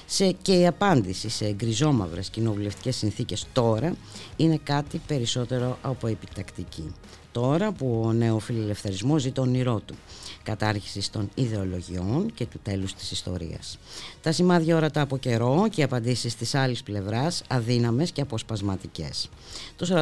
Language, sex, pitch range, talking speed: Greek, female, 105-145 Hz, 130 wpm